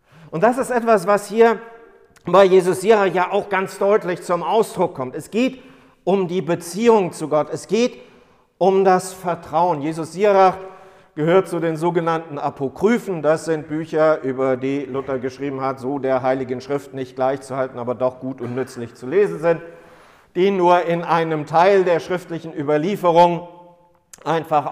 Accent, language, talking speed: German, German, 160 wpm